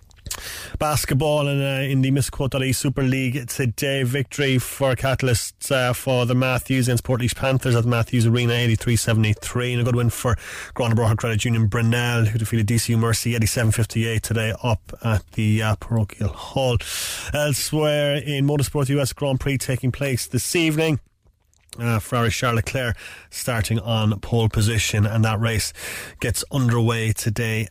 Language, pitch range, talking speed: English, 115-150 Hz, 155 wpm